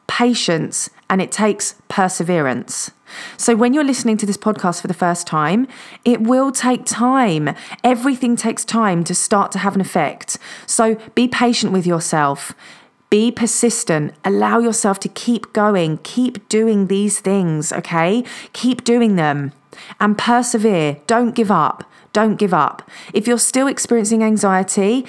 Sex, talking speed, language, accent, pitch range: female, 150 wpm, English, British, 185-230 Hz